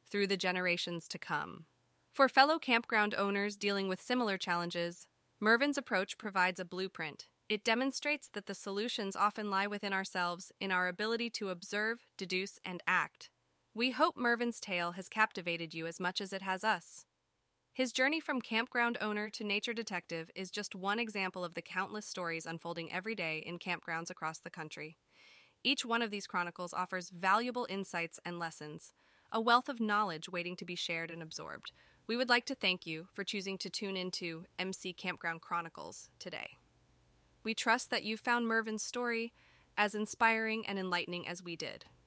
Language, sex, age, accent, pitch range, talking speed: English, female, 20-39, American, 175-225 Hz, 175 wpm